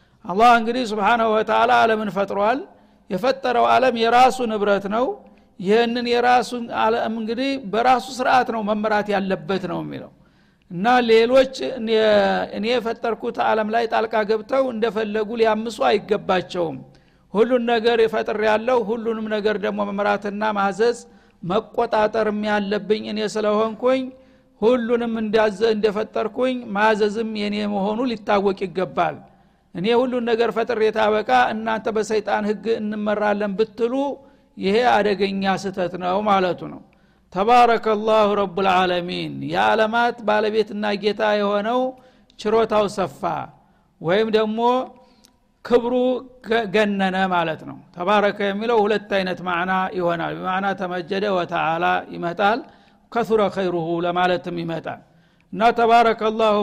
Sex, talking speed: male, 90 wpm